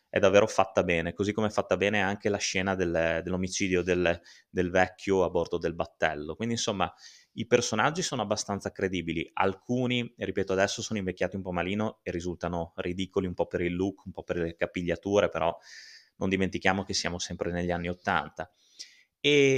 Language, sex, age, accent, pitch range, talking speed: Italian, male, 20-39, native, 90-105 Hz, 180 wpm